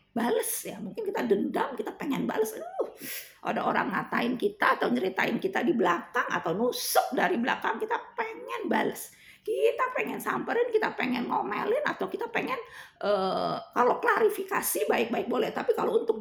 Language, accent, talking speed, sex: Indonesian, native, 155 wpm, female